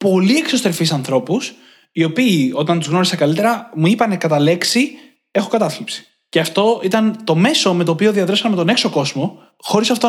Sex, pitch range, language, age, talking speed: male, 155-215 Hz, Greek, 20-39, 170 wpm